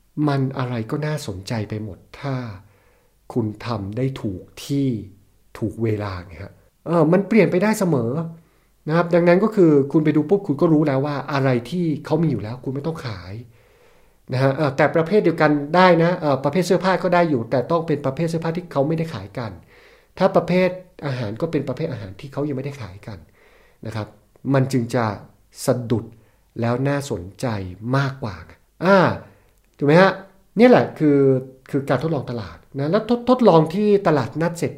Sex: male